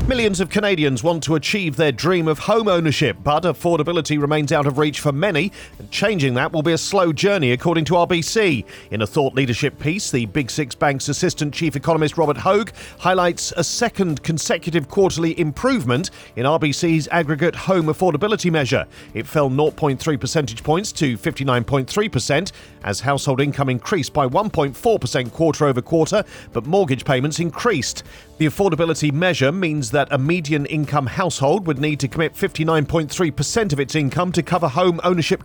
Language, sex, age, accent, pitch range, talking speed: English, male, 40-59, British, 140-175 Hz, 165 wpm